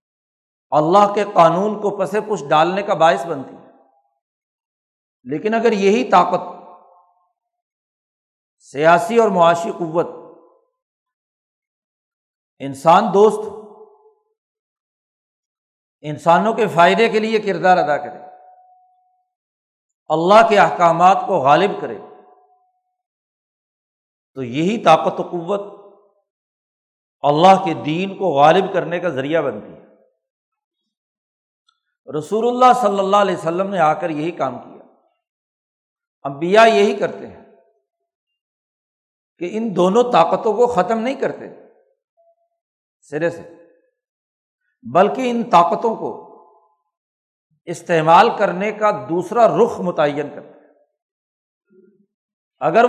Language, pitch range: Urdu, 170-240 Hz